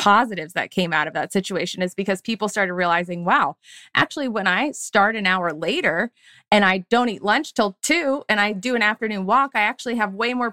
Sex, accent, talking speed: female, American, 215 wpm